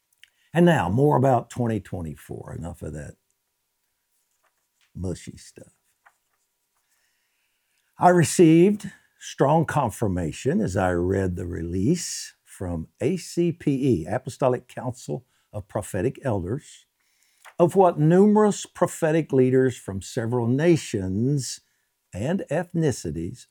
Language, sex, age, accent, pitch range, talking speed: English, male, 60-79, American, 95-145 Hz, 90 wpm